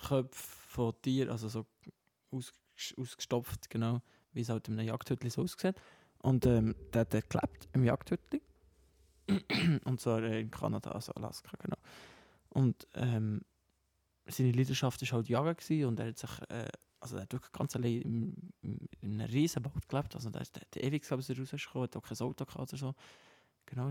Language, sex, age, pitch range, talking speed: German, male, 20-39, 115-135 Hz, 175 wpm